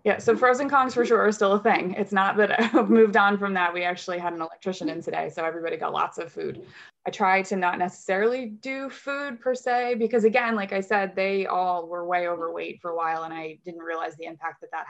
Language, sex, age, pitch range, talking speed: English, female, 20-39, 170-215 Hz, 245 wpm